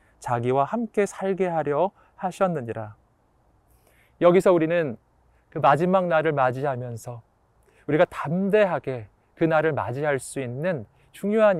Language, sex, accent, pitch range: Korean, male, native, 125-180 Hz